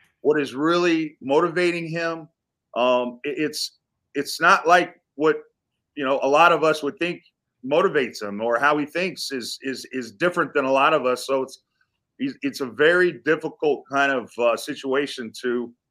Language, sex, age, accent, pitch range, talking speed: English, male, 30-49, American, 145-180 Hz, 175 wpm